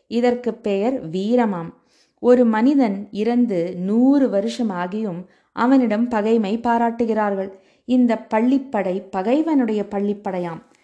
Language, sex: Tamil, female